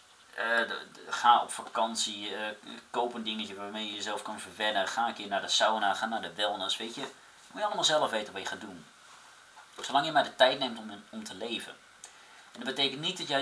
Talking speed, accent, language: 235 wpm, Dutch, Dutch